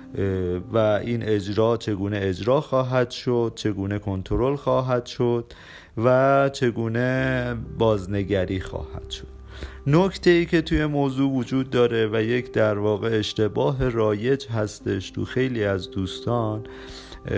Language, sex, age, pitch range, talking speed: Persian, male, 30-49, 105-135 Hz, 115 wpm